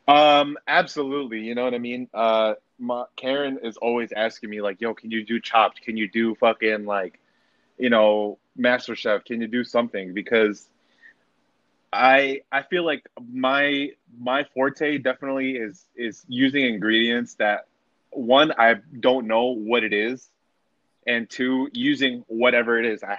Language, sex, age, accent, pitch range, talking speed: English, male, 20-39, American, 110-130 Hz, 160 wpm